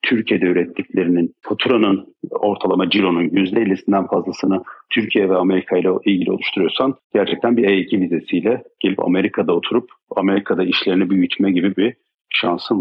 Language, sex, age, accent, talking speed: Turkish, male, 40-59, native, 120 wpm